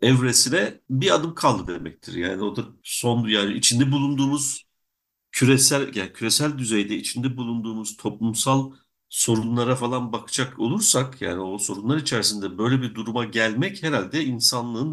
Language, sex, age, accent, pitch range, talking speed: Turkish, male, 60-79, native, 105-135 Hz, 135 wpm